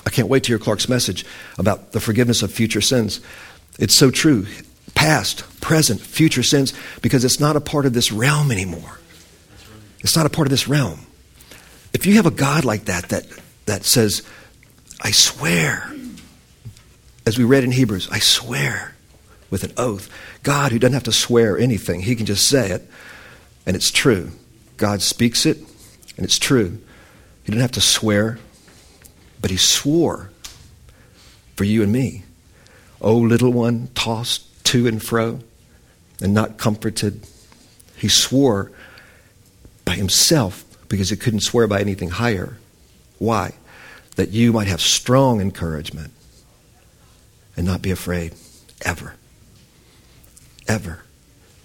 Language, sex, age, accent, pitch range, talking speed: English, male, 50-69, American, 95-125 Hz, 145 wpm